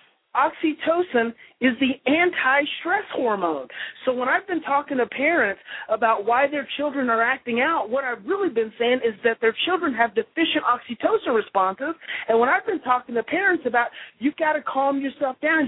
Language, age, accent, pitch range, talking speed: English, 40-59, American, 245-330 Hz, 175 wpm